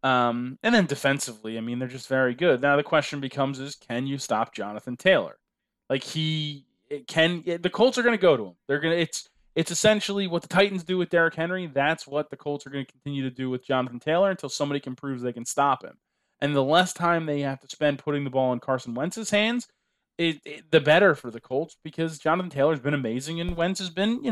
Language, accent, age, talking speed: English, American, 20-39, 245 wpm